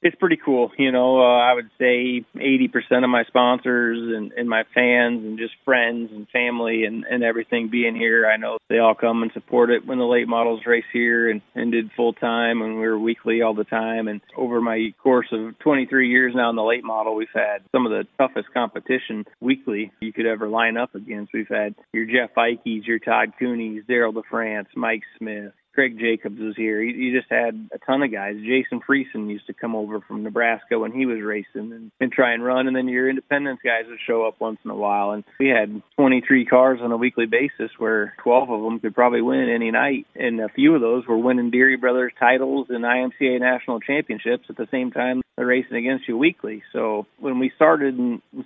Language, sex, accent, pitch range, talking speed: English, male, American, 110-125 Hz, 220 wpm